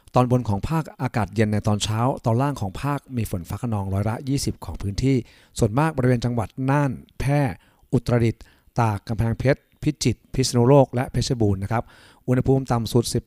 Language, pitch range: Thai, 105-130 Hz